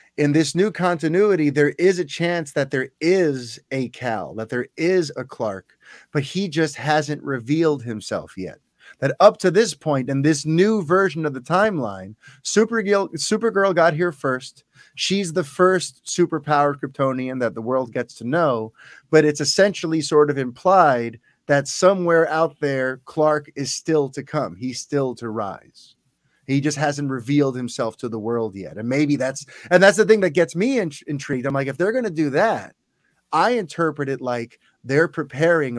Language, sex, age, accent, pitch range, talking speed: English, male, 30-49, American, 130-170 Hz, 180 wpm